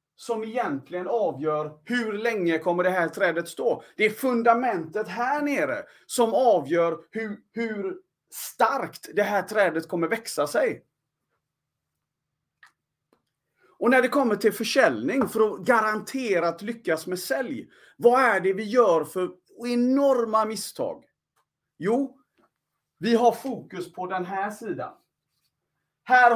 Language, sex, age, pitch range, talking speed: Swedish, male, 30-49, 180-240 Hz, 125 wpm